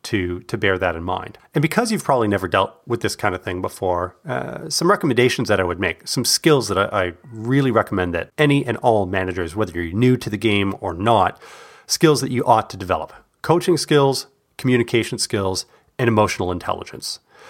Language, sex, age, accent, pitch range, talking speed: English, male, 30-49, American, 95-125 Hz, 200 wpm